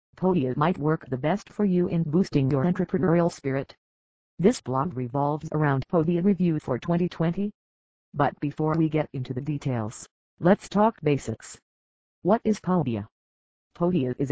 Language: English